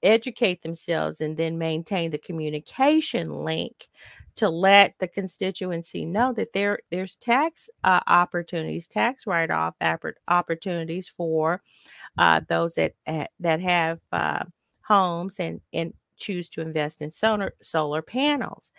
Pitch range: 170-235 Hz